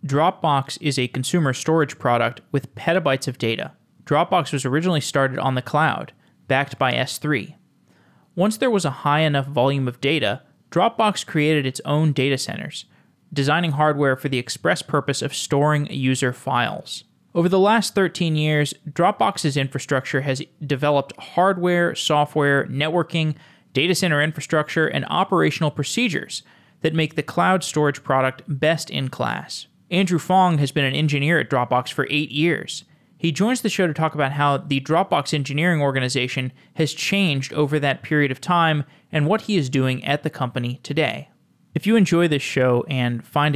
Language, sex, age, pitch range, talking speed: English, male, 20-39, 135-170 Hz, 165 wpm